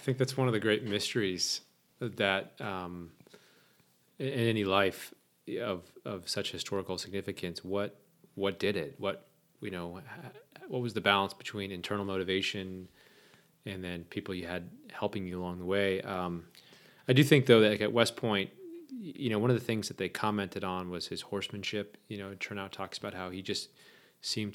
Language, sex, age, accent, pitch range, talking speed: English, male, 30-49, American, 90-110 Hz, 185 wpm